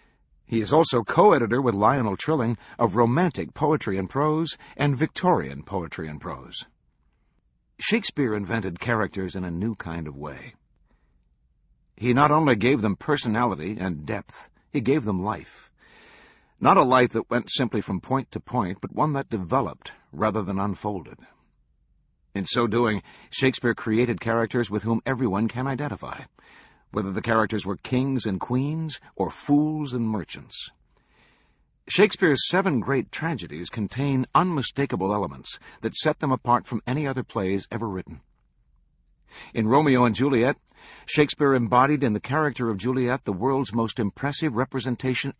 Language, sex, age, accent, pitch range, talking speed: English, male, 50-69, American, 100-135 Hz, 145 wpm